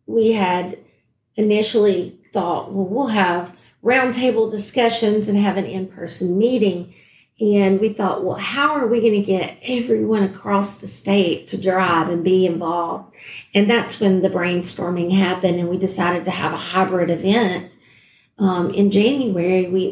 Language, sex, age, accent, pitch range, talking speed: English, female, 40-59, American, 180-215 Hz, 155 wpm